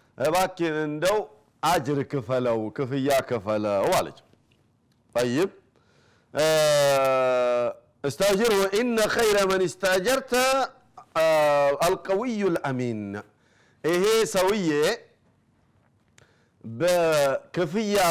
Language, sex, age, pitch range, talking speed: Amharic, male, 50-69, 140-195 Hz, 65 wpm